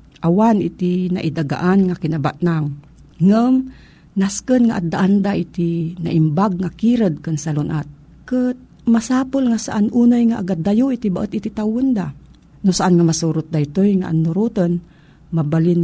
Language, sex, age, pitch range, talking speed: Filipino, female, 50-69, 165-220 Hz, 135 wpm